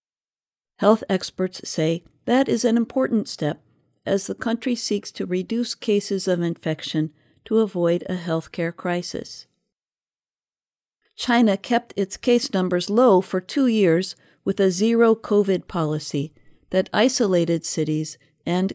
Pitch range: 165-210 Hz